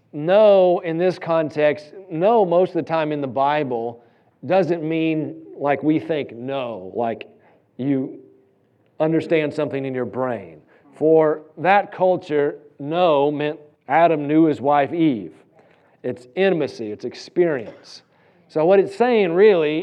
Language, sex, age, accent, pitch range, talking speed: English, male, 40-59, American, 150-190 Hz, 135 wpm